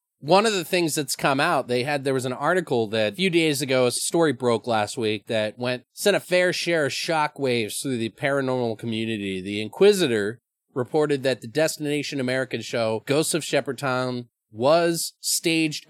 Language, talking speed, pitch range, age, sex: English, 185 wpm, 125-165 Hz, 30-49, male